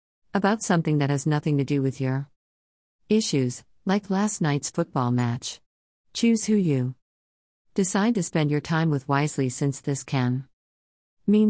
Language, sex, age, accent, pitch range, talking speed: English, female, 50-69, American, 120-160 Hz, 150 wpm